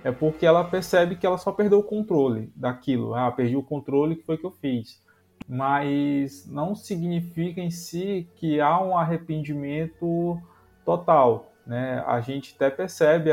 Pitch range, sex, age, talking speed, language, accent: 125-170 Hz, male, 20-39, 165 wpm, Portuguese, Brazilian